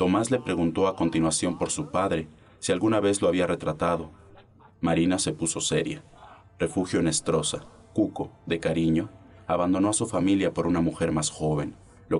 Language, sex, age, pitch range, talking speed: Spanish, male, 30-49, 80-95 Hz, 165 wpm